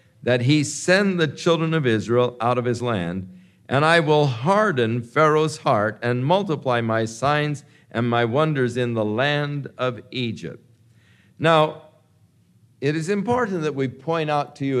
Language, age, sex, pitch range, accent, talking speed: English, 50-69, male, 125-165 Hz, American, 160 wpm